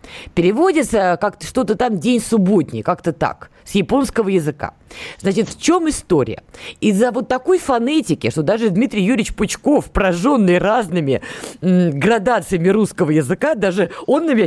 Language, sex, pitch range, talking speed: Russian, female, 175-245 Hz, 135 wpm